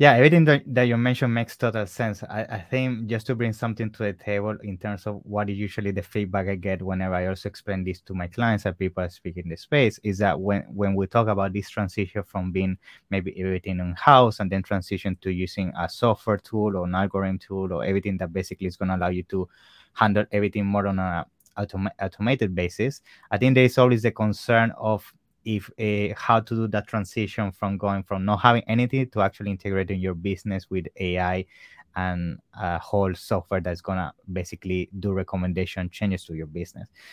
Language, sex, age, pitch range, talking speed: English, male, 20-39, 95-110 Hz, 210 wpm